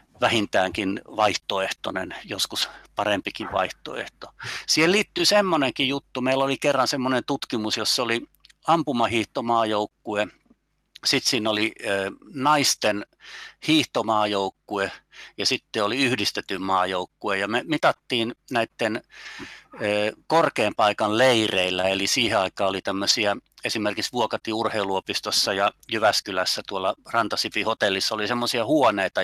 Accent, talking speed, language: native, 100 wpm, Finnish